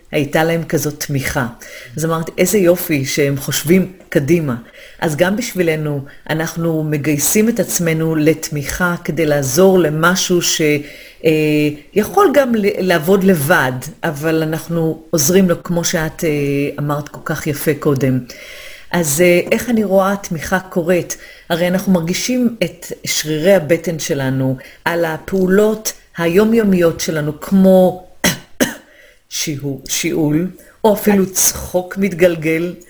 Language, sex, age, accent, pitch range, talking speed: Hebrew, female, 40-59, native, 155-185 Hz, 110 wpm